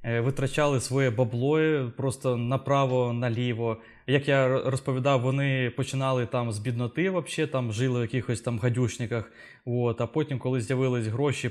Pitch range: 120-145 Hz